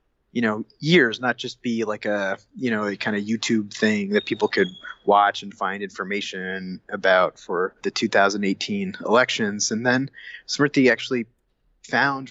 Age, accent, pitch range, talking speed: 30-49, American, 105-130 Hz, 155 wpm